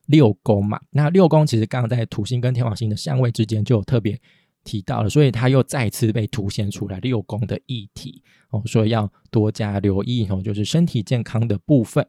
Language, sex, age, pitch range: Chinese, male, 20-39, 110-145 Hz